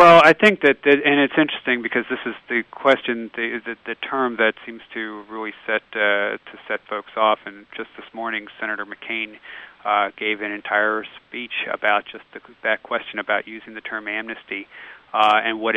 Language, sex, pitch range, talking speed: English, male, 105-115 Hz, 195 wpm